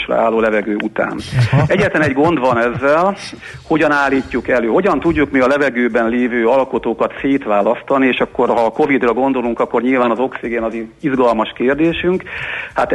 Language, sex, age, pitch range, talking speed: Hungarian, male, 50-69, 115-140 Hz, 155 wpm